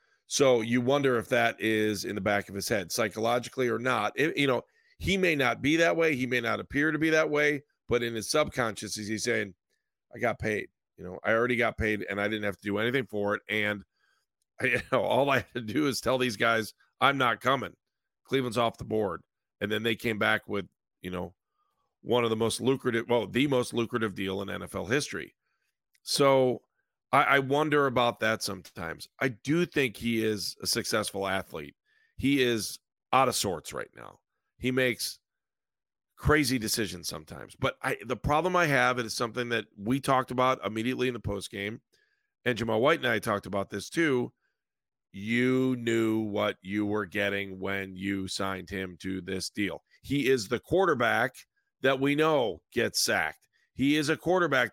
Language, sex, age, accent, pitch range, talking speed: English, male, 40-59, American, 105-130 Hz, 185 wpm